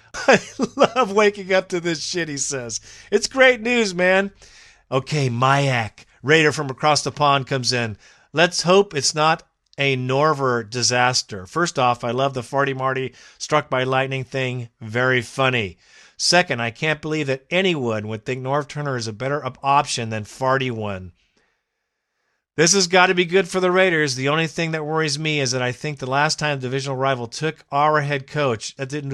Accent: American